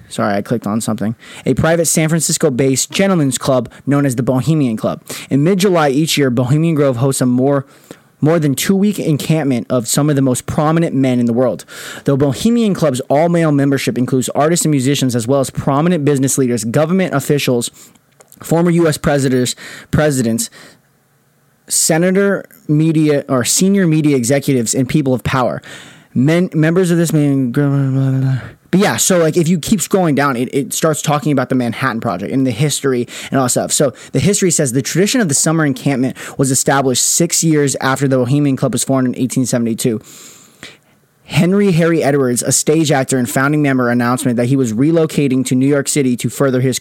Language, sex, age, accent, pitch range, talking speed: English, male, 20-39, American, 130-160 Hz, 190 wpm